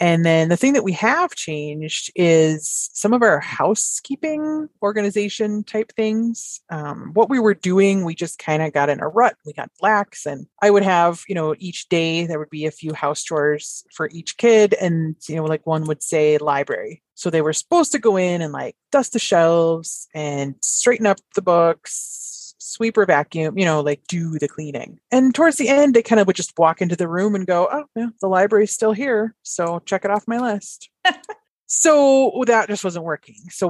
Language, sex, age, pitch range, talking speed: English, female, 30-49, 155-220 Hz, 205 wpm